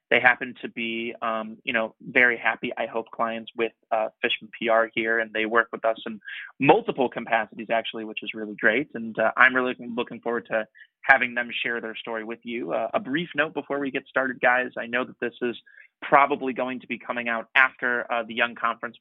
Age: 20-39